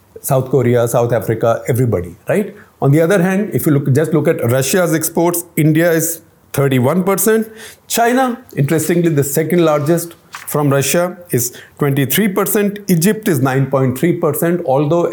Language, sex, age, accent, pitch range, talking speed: English, male, 50-69, Indian, 130-170 Hz, 135 wpm